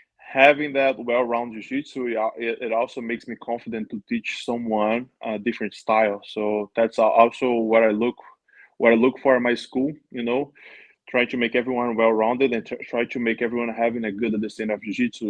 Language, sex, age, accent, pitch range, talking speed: English, male, 20-39, Brazilian, 115-135 Hz, 180 wpm